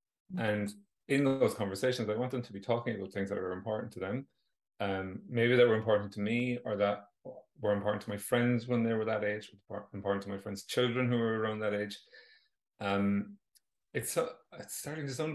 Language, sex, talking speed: English, male, 210 wpm